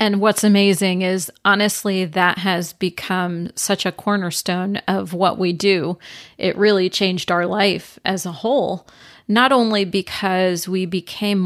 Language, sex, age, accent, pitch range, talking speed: English, female, 40-59, American, 180-200 Hz, 145 wpm